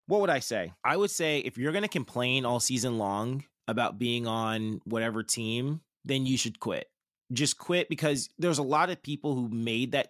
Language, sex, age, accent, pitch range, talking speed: English, male, 20-39, American, 120-155 Hz, 210 wpm